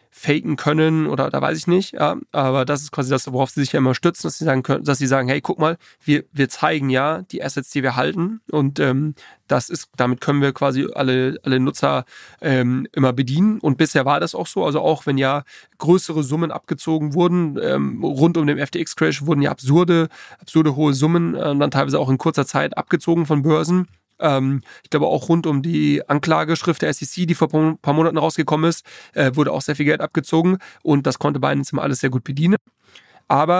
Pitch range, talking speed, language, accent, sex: 135-160 Hz, 205 wpm, German, German, male